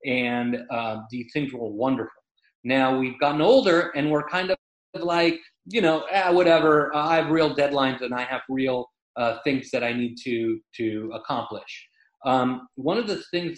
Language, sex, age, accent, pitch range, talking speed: English, male, 30-49, American, 125-165 Hz, 175 wpm